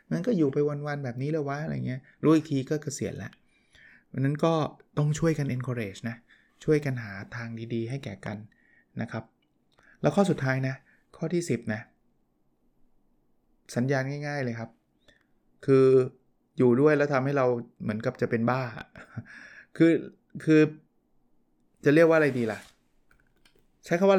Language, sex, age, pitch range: Thai, male, 20-39, 120-155 Hz